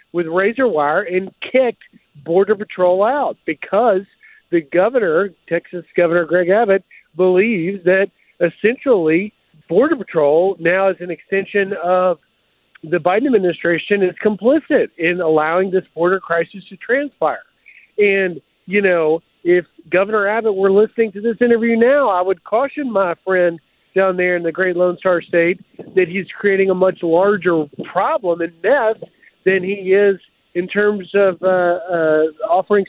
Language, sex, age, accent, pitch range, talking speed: English, male, 50-69, American, 175-210 Hz, 145 wpm